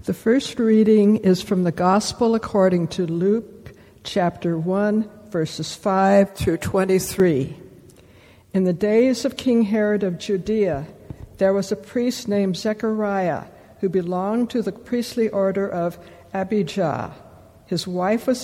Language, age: English, 60-79